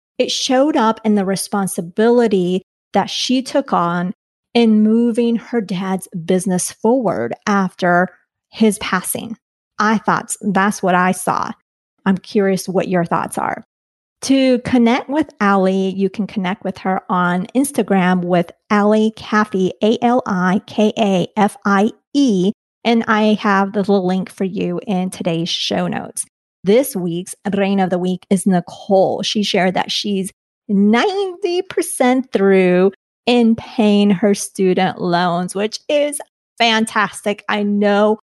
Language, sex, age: English, female, 40-59